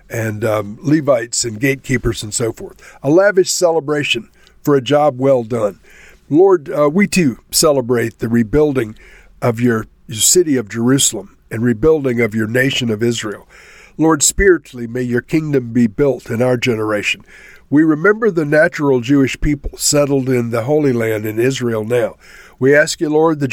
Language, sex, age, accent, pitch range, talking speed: English, male, 60-79, American, 120-155 Hz, 165 wpm